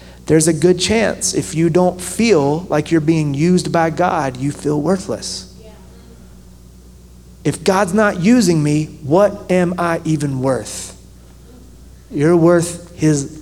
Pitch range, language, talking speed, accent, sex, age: 120-180 Hz, English, 135 wpm, American, male, 30-49